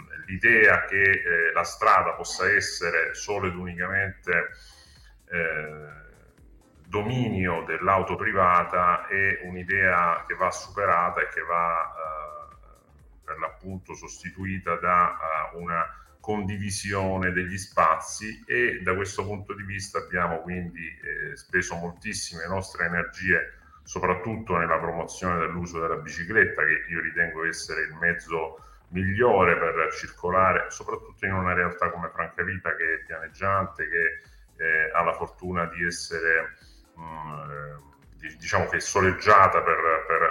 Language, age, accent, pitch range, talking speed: Italian, 40-59, native, 85-100 Hz, 125 wpm